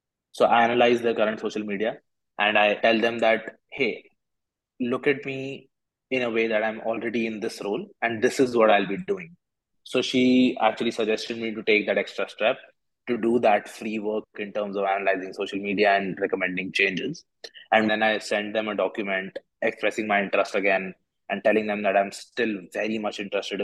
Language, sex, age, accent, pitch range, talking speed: English, male, 20-39, Indian, 100-115 Hz, 195 wpm